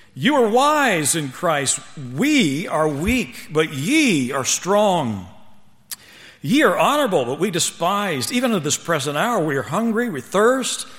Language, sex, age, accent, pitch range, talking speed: English, male, 60-79, American, 150-215 Hz, 155 wpm